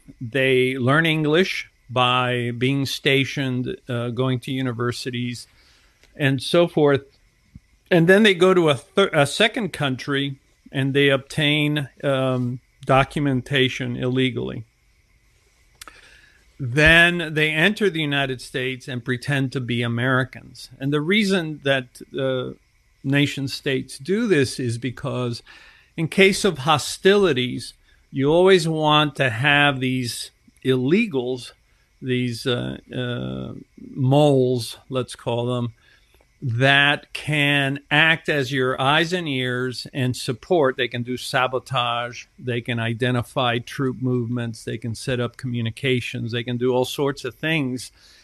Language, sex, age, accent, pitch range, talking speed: English, male, 50-69, American, 125-150 Hz, 125 wpm